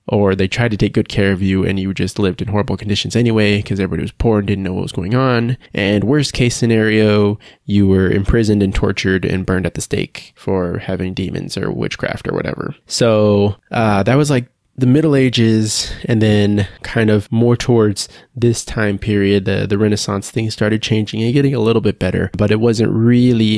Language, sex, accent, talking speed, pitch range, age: English, male, American, 210 wpm, 100-110 Hz, 20-39